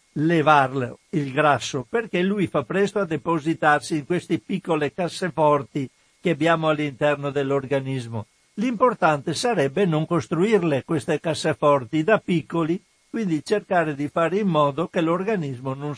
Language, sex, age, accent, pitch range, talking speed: Italian, male, 60-79, native, 145-180 Hz, 130 wpm